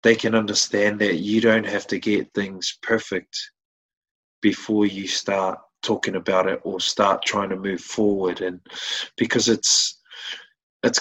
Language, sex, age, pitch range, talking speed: English, male, 20-39, 100-125 Hz, 145 wpm